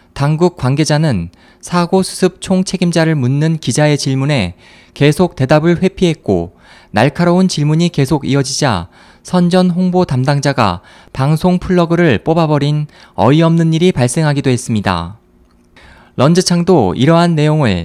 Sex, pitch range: male, 120-175 Hz